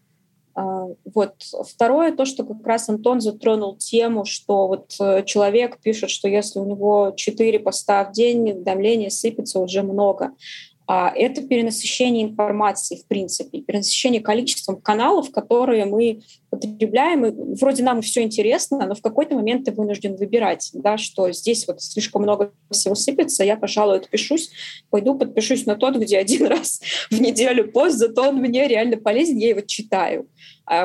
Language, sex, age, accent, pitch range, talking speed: Russian, female, 20-39, native, 195-235 Hz, 150 wpm